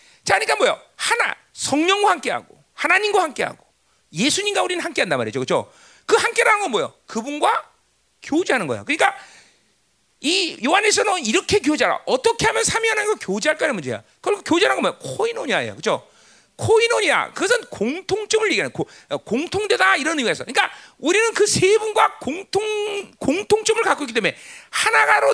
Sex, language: male, Korean